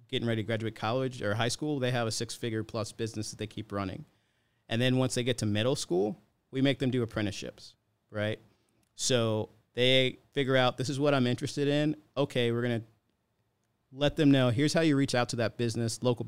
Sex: male